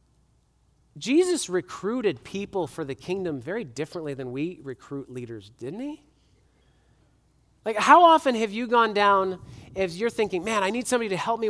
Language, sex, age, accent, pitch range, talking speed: English, male, 40-59, American, 160-235 Hz, 160 wpm